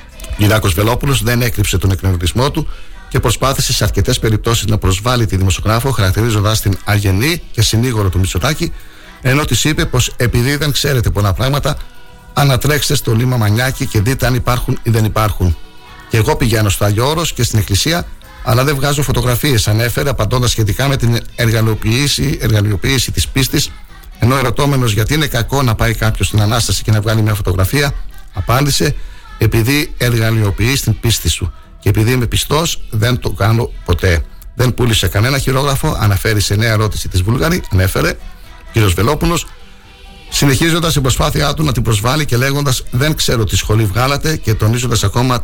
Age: 60-79